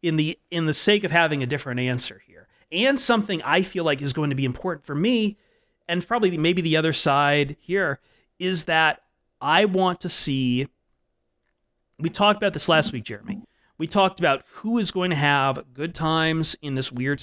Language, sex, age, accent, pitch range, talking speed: English, male, 30-49, American, 135-180 Hz, 195 wpm